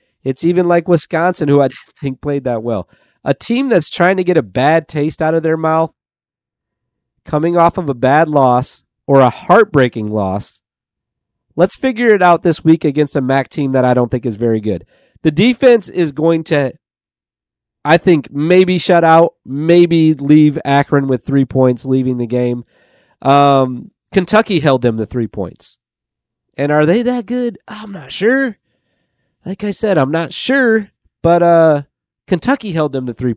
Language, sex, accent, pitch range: English, male, American, 135-190 Hz